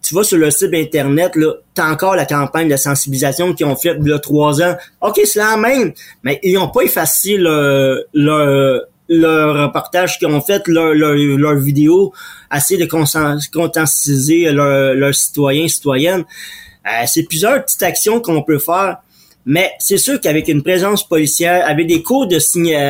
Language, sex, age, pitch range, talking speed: French, male, 30-49, 150-195 Hz, 175 wpm